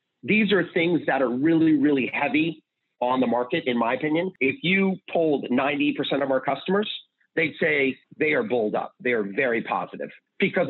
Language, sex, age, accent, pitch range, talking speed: English, male, 40-59, American, 130-175 Hz, 180 wpm